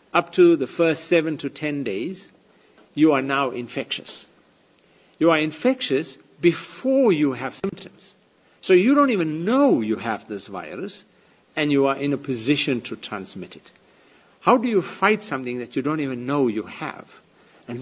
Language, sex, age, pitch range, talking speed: English, male, 50-69, 135-195 Hz, 170 wpm